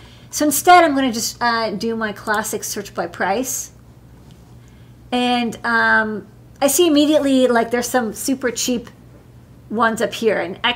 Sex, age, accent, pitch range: female, 40-59, American, 220-280 Hz